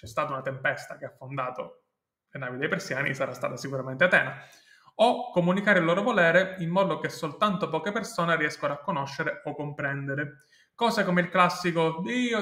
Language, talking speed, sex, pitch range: Italian, 175 wpm, male, 145-185 Hz